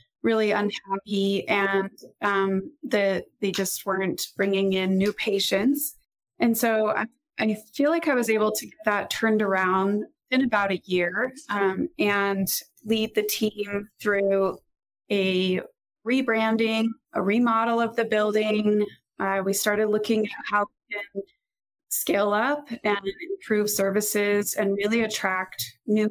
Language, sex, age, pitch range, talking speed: English, female, 20-39, 195-230 Hz, 135 wpm